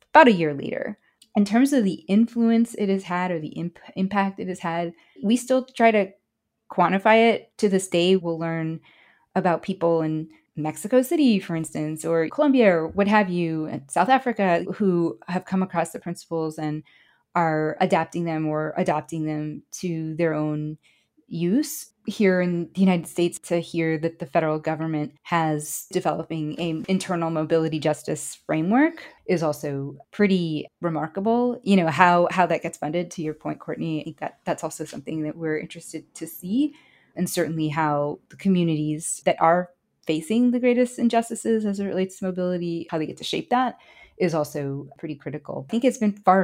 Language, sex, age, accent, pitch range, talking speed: English, female, 20-39, American, 160-200 Hz, 180 wpm